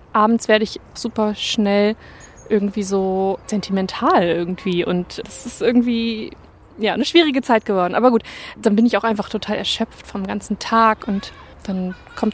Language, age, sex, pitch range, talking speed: German, 20-39, female, 205-235 Hz, 160 wpm